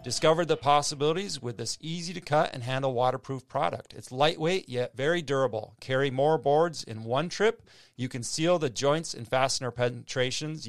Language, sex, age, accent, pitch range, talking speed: English, male, 30-49, American, 120-150 Hz, 165 wpm